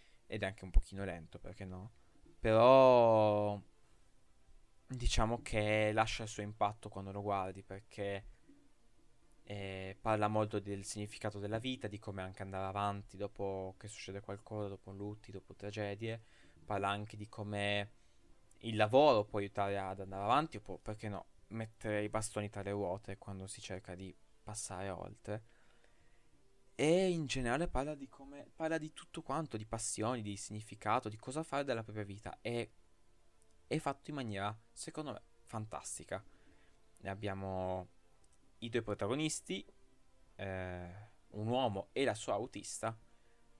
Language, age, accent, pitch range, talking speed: Italian, 20-39, native, 95-115 Hz, 145 wpm